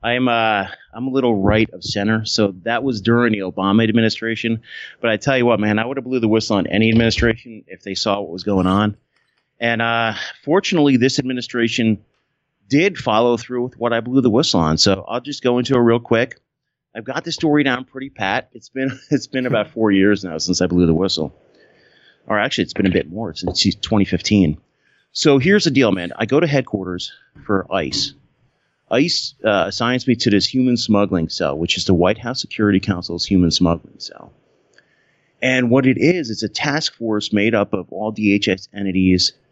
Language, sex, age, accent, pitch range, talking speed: English, male, 30-49, American, 95-120 Hz, 200 wpm